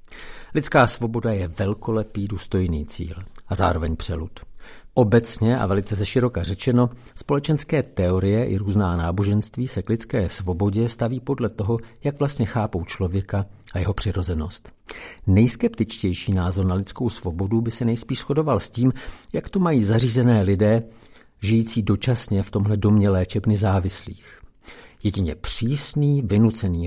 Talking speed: 130 wpm